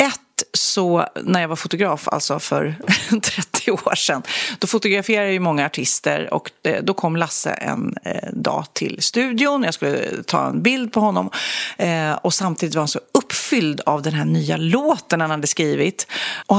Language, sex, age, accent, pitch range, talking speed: Swedish, female, 40-59, native, 175-235 Hz, 170 wpm